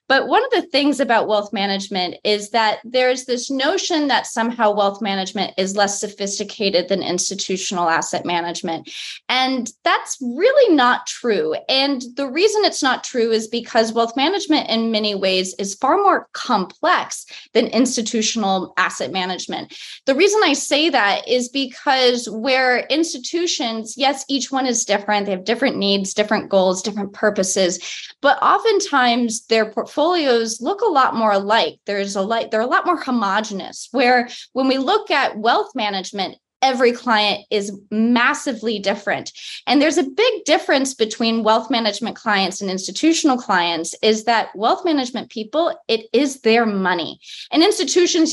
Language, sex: English, female